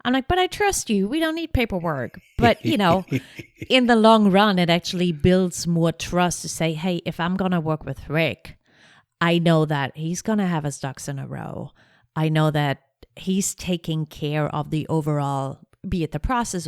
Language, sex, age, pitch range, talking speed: English, female, 30-49, 145-185 Hz, 200 wpm